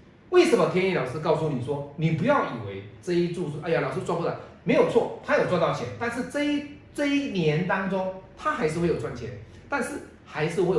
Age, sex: 30-49, male